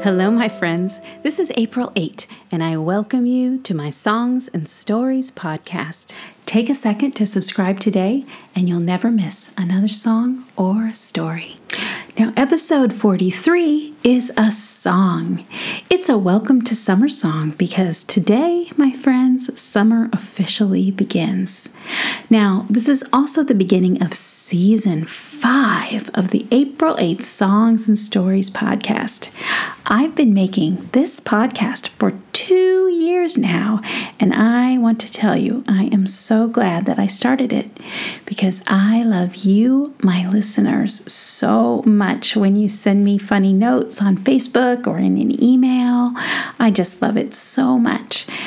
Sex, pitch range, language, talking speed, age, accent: female, 195-255 Hz, English, 145 wpm, 40-59, American